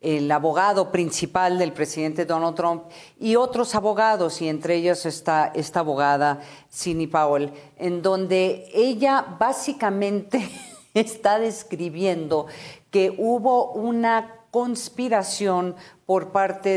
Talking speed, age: 105 wpm, 50-69